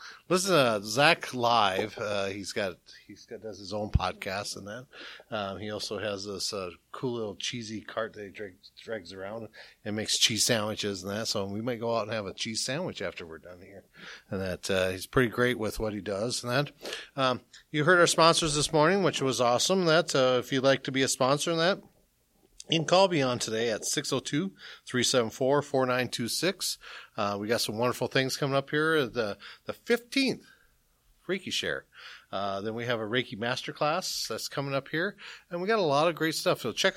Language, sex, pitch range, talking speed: English, male, 105-155 Hz, 205 wpm